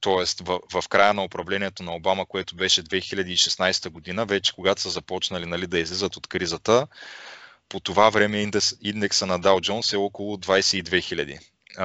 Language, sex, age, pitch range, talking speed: Bulgarian, male, 20-39, 95-105 Hz, 160 wpm